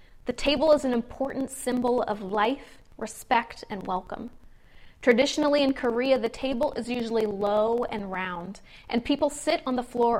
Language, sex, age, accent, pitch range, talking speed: English, female, 30-49, American, 220-265 Hz, 160 wpm